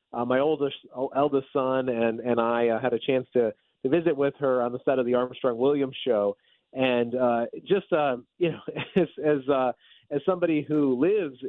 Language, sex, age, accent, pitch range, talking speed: English, male, 30-49, American, 115-135 Hz, 200 wpm